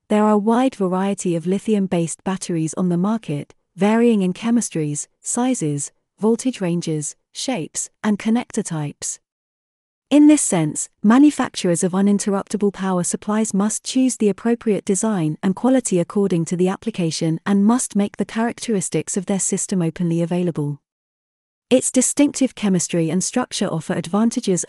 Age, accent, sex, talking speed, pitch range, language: 30-49, British, female, 140 wpm, 175-230 Hz, English